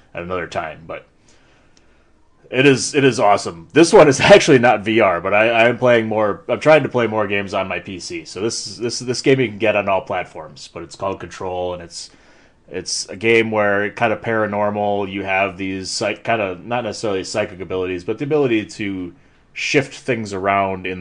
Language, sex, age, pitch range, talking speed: English, male, 30-49, 90-110 Hz, 210 wpm